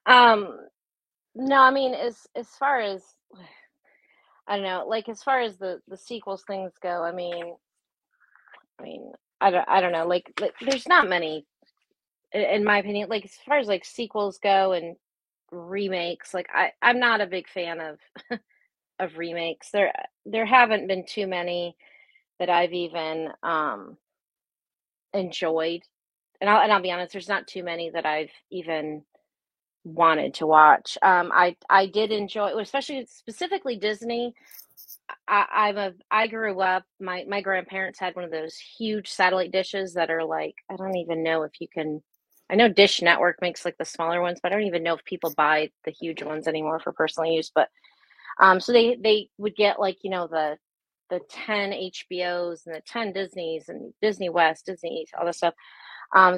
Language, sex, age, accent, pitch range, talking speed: English, female, 30-49, American, 170-210 Hz, 175 wpm